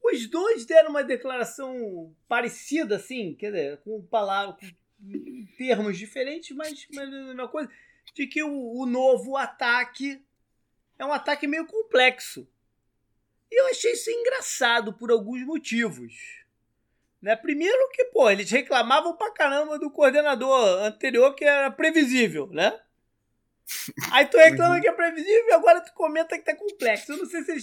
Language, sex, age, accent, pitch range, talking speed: Portuguese, male, 20-39, Brazilian, 215-305 Hz, 150 wpm